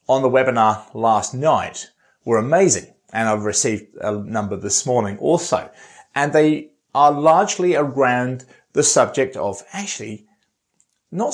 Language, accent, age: English, British, 30-49